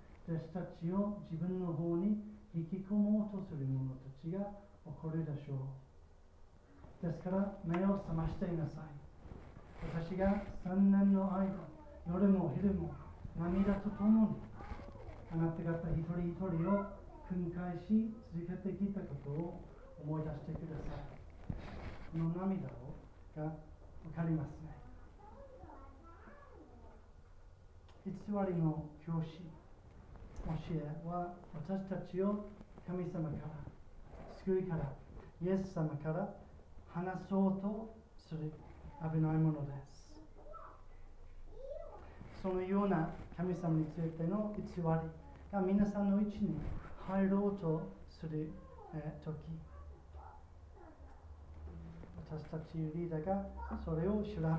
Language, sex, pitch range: Japanese, male, 140-190 Hz